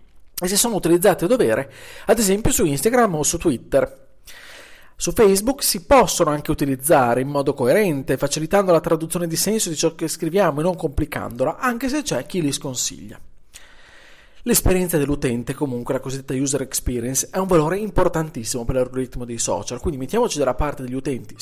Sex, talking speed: male, 170 wpm